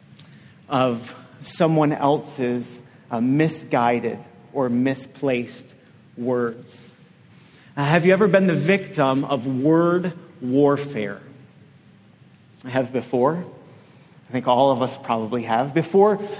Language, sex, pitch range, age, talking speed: English, male, 130-165 Hz, 40-59, 105 wpm